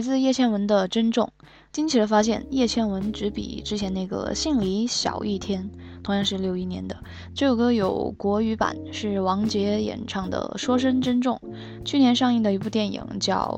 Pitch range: 185-220 Hz